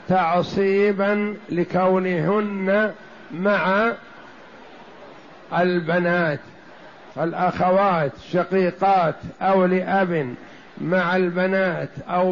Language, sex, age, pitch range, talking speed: Arabic, male, 50-69, 175-200 Hz, 55 wpm